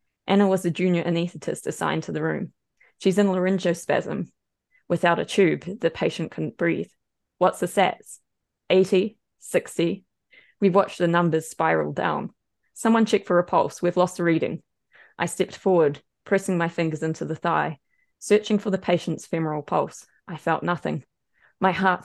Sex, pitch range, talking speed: female, 170-190 Hz, 160 wpm